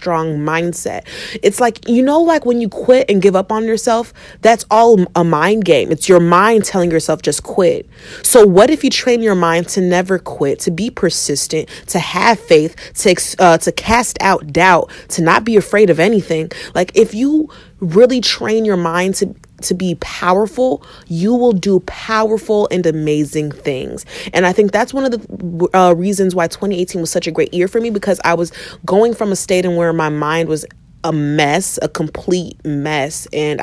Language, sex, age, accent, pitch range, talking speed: English, female, 30-49, American, 160-210 Hz, 195 wpm